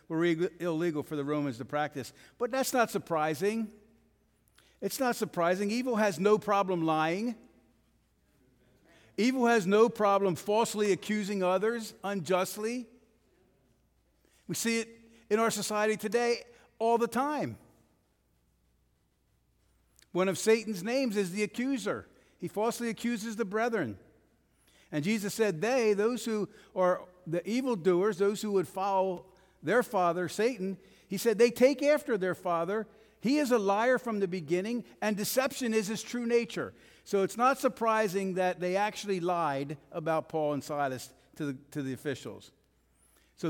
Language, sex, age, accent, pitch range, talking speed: English, male, 50-69, American, 175-225 Hz, 140 wpm